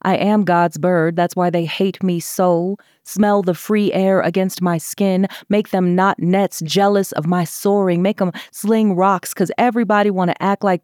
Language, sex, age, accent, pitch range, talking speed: English, female, 30-49, American, 175-210 Hz, 190 wpm